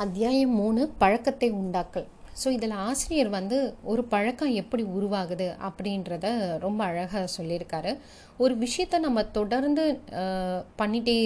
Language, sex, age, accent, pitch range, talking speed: Tamil, female, 30-49, native, 190-250 Hz, 110 wpm